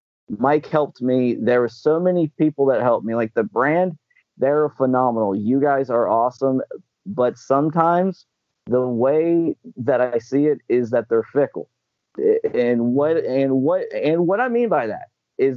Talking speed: 165 wpm